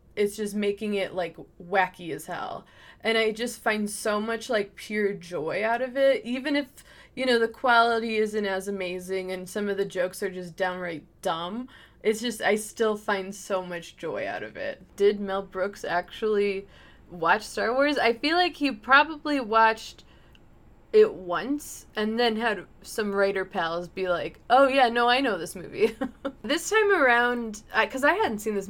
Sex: female